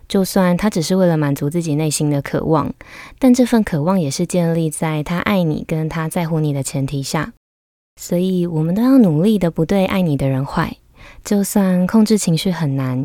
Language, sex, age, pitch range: Chinese, female, 20-39, 150-180 Hz